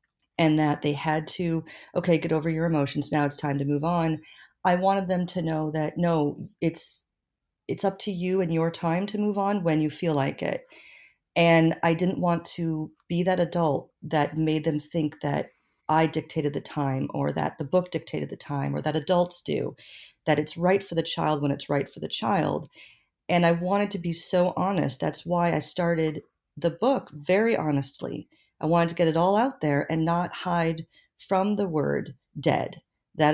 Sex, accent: female, American